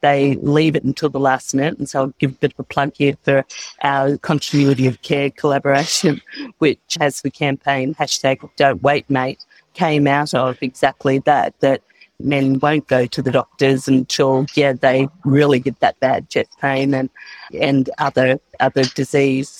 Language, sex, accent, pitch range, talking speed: English, female, Australian, 135-150 Hz, 175 wpm